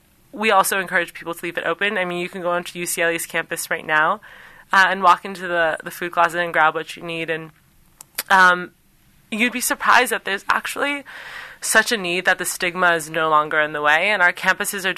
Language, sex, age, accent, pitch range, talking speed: English, female, 20-39, American, 165-195 Hz, 220 wpm